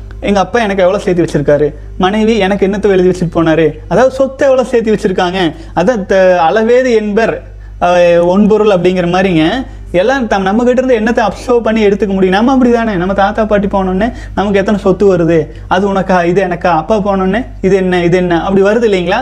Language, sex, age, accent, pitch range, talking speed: Tamil, male, 30-49, native, 180-230 Hz, 100 wpm